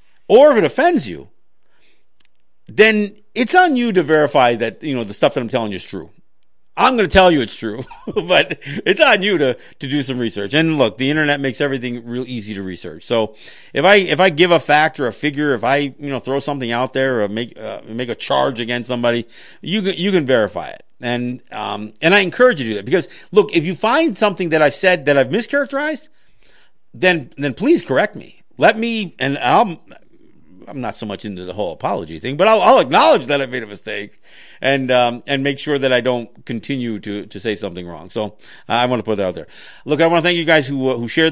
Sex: male